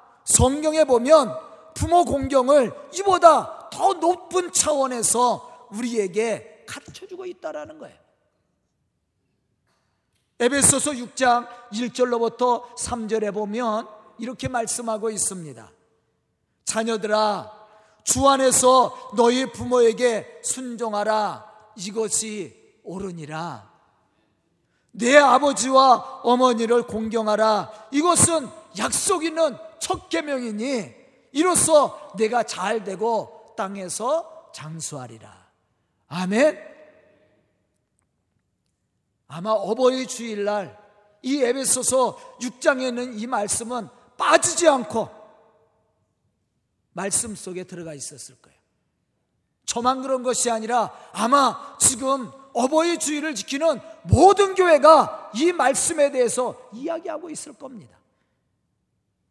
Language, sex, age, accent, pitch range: Korean, male, 40-59, native, 210-285 Hz